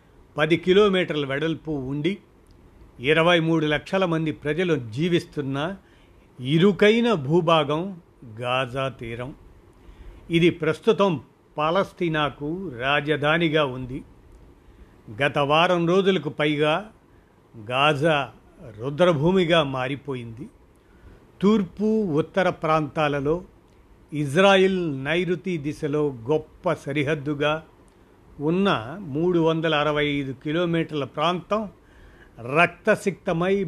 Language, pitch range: Telugu, 140-175 Hz